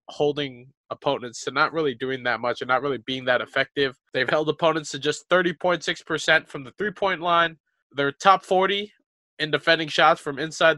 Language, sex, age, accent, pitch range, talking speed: English, male, 20-39, American, 140-180 Hz, 180 wpm